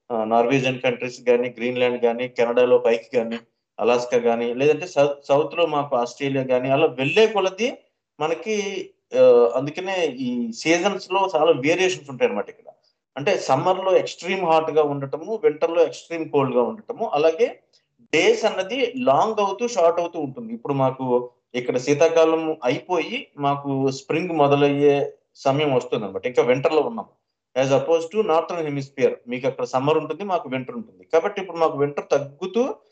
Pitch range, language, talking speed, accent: 140-205 Hz, Telugu, 150 wpm, native